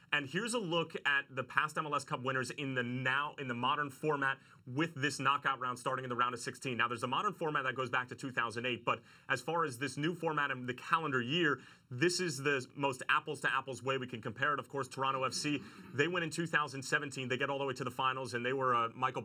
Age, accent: 30-49, American